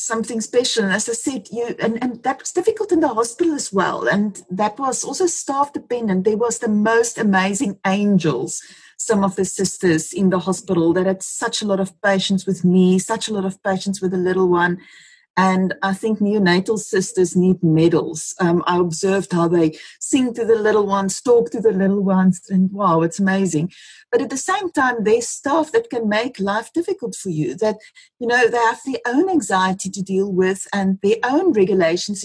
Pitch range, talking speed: 185-235 Hz, 205 wpm